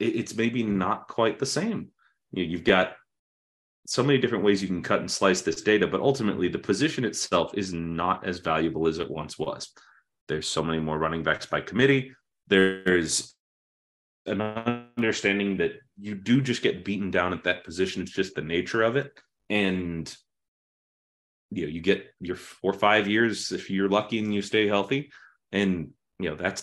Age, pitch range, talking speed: 30-49, 85-105 Hz, 180 wpm